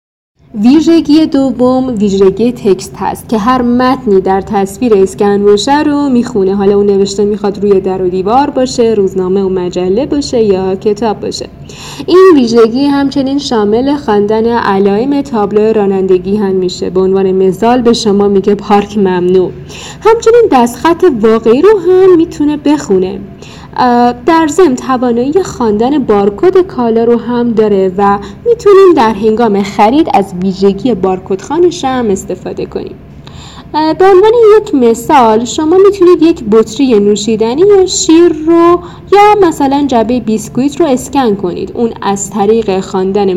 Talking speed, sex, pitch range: 135 wpm, female, 200-280 Hz